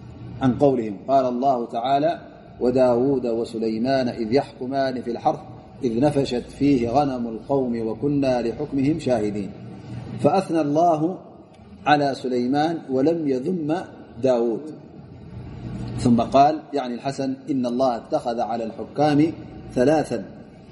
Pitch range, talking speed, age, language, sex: 120-150 Hz, 105 wpm, 30-49, Amharic, male